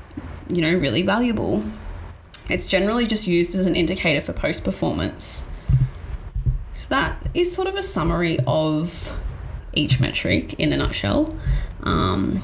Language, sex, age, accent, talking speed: English, female, 20-39, Australian, 135 wpm